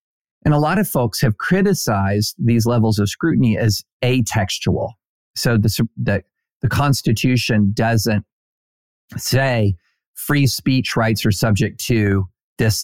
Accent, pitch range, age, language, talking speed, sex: American, 110-135 Hz, 40-59, English, 125 wpm, male